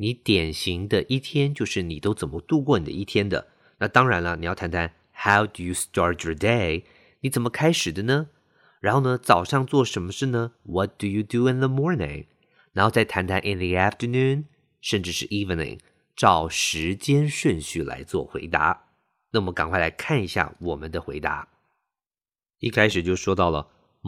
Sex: male